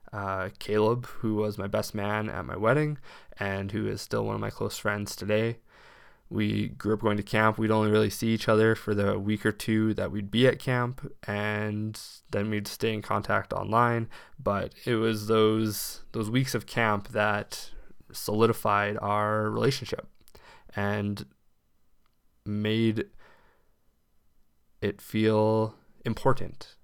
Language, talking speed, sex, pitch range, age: English, 150 wpm, male, 105-115 Hz, 20-39